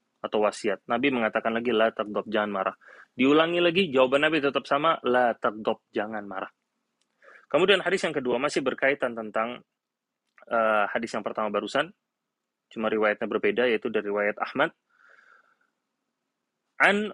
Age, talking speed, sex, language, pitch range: 20-39, 135 wpm, male, Indonesian, 110-155 Hz